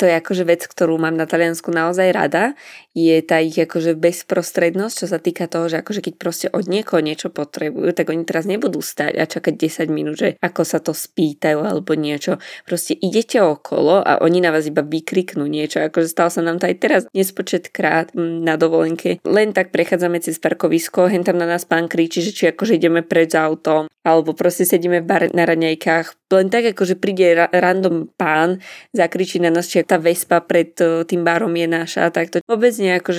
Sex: female